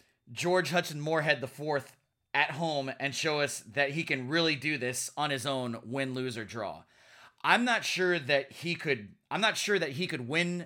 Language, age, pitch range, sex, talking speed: English, 30-49, 130-170 Hz, male, 205 wpm